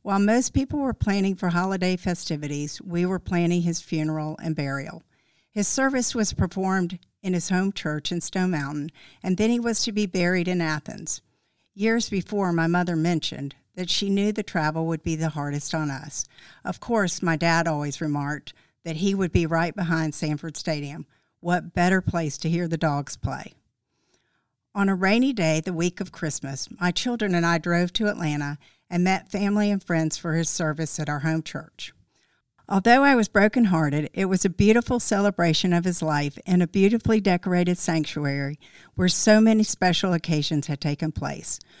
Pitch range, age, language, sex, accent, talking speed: 155-195 Hz, 50-69, English, female, American, 180 wpm